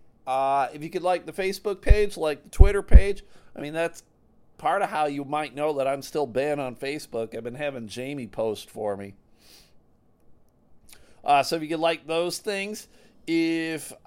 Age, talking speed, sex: 40-59, 185 wpm, male